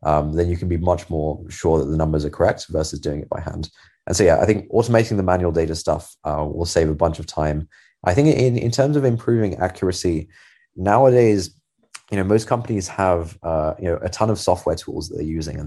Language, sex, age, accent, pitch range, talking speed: English, male, 20-39, British, 80-100 Hz, 235 wpm